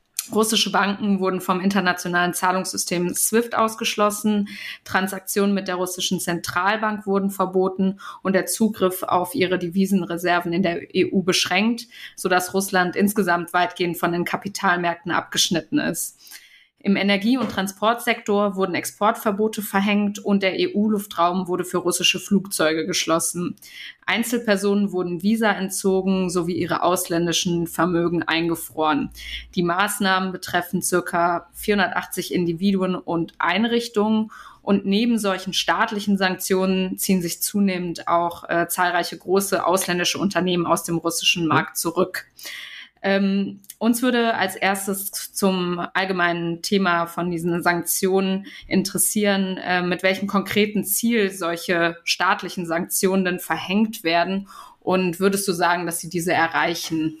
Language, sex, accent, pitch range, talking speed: German, female, German, 175-200 Hz, 120 wpm